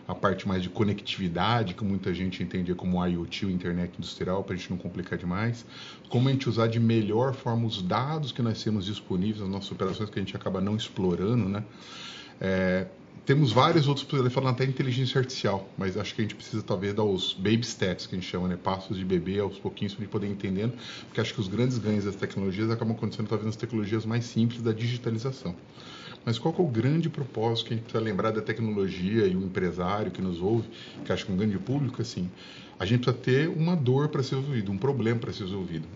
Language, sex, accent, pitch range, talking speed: Portuguese, male, Brazilian, 95-120 Hz, 225 wpm